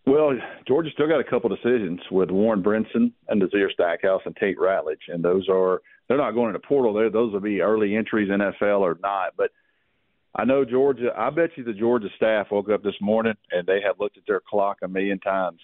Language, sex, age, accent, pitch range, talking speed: English, male, 50-69, American, 95-125 Hz, 225 wpm